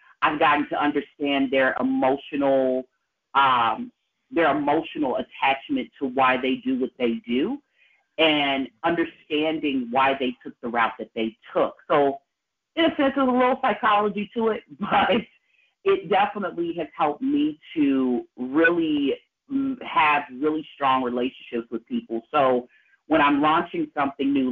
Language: English